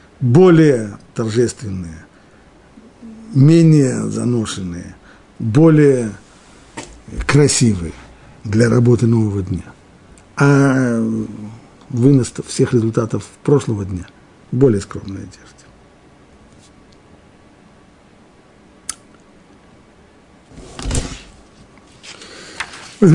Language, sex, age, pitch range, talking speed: Russian, male, 50-69, 105-140 Hz, 50 wpm